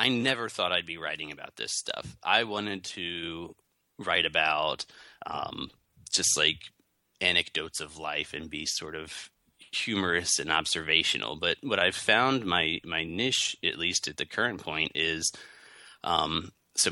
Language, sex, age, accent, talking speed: English, male, 30-49, American, 150 wpm